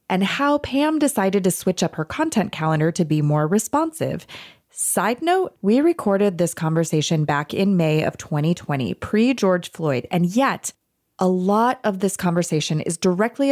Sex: female